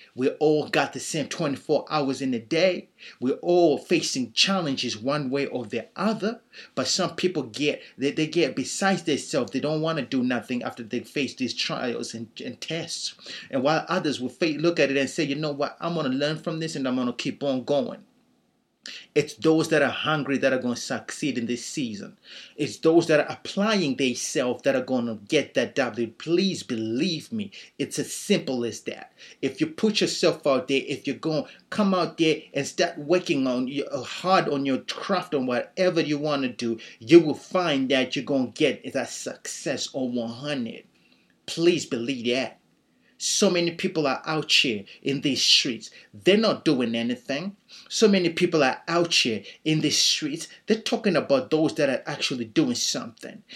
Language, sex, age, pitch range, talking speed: English, male, 30-49, 130-180 Hz, 195 wpm